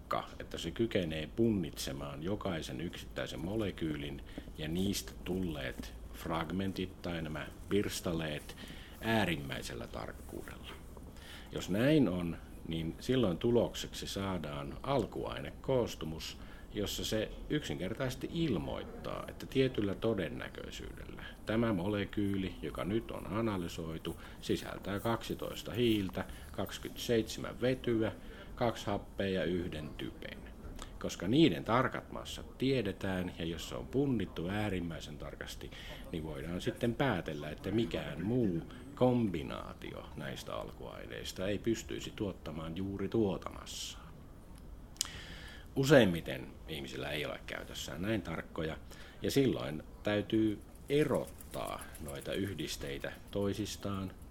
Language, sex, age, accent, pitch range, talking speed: Finnish, male, 50-69, native, 80-110 Hz, 95 wpm